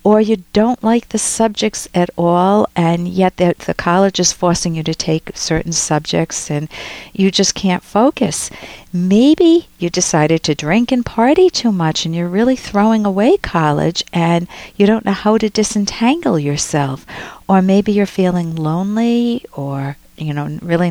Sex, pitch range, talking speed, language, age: female, 165-215 Hz, 165 wpm, English, 50-69